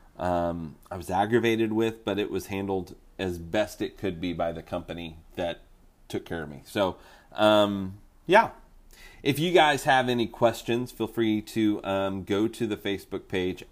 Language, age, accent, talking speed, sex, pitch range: English, 30-49, American, 175 wpm, male, 90-110 Hz